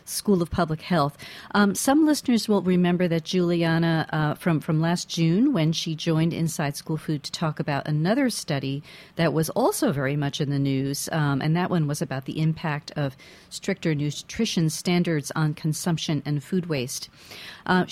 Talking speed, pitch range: 180 wpm, 150-185 Hz